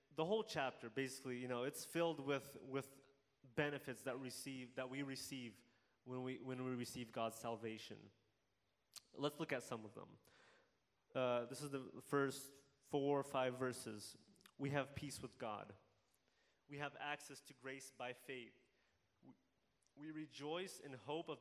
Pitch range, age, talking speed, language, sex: 125-150 Hz, 20-39, 150 wpm, English, male